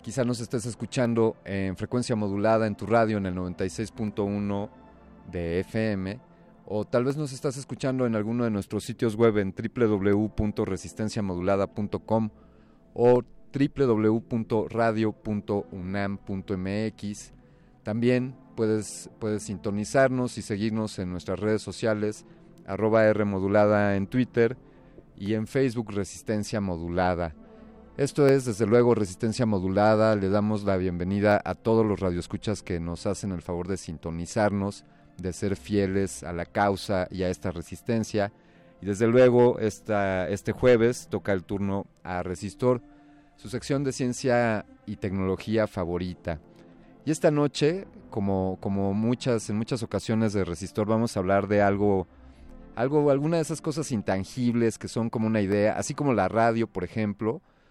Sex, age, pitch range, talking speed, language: male, 30-49, 100-120 Hz, 140 wpm, Spanish